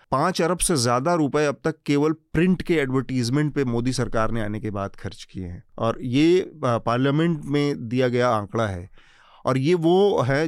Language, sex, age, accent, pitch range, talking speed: Hindi, male, 30-49, native, 120-155 Hz, 190 wpm